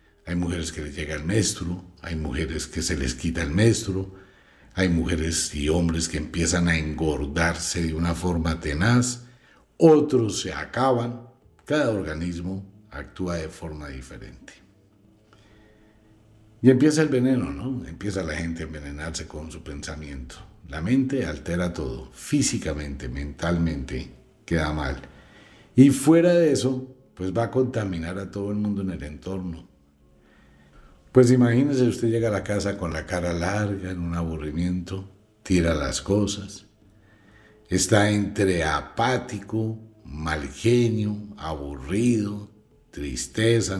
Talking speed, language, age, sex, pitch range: 130 wpm, Spanish, 60-79, male, 80-110 Hz